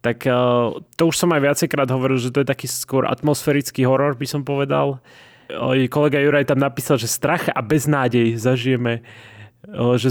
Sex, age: male, 20-39